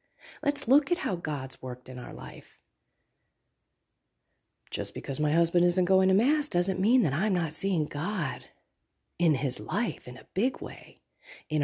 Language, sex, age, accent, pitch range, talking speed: English, female, 40-59, American, 125-185 Hz, 165 wpm